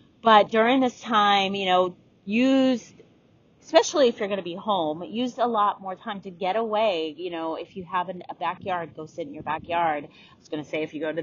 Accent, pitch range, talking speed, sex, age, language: American, 170-215 Hz, 230 wpm, female, 30-49, English